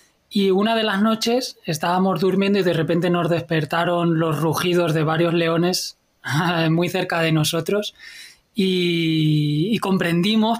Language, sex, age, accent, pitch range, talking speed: Spanish, male, 20-39, Spanish, 160-185 Hz, 135 wpm